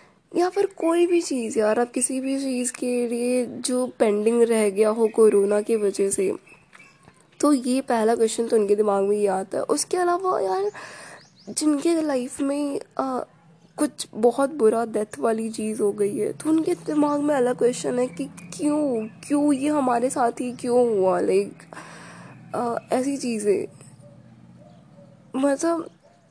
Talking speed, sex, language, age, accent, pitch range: 155 wpm, female, Hindi, 10-29, native, 230-290 Hz